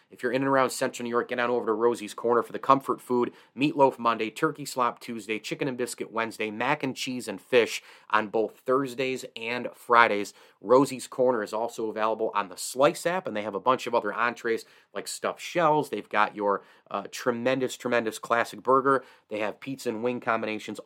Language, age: English, 30-49